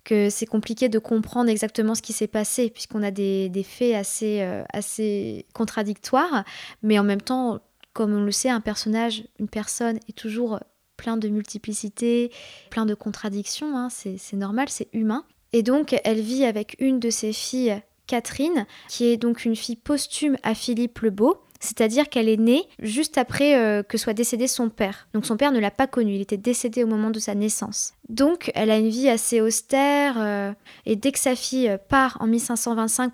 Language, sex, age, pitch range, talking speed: French, female, 20-39, 215-255 Hz, 195 wpm